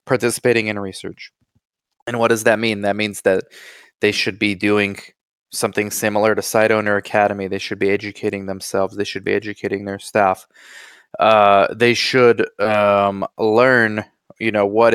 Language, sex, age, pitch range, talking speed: English, male, 20-39, 105-125 Hz, 160 wpm